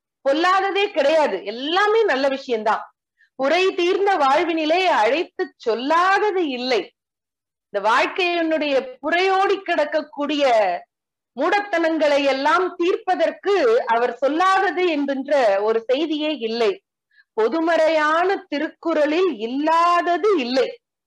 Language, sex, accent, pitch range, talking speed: Tamil, female, native, 245-360 Hz, 80 wpm